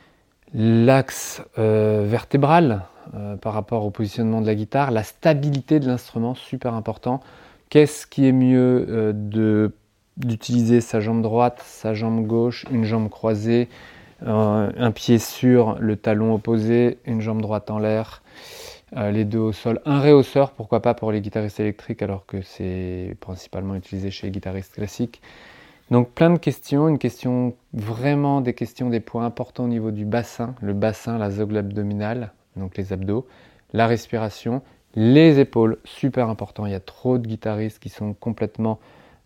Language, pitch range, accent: French, 105-125 Hz, French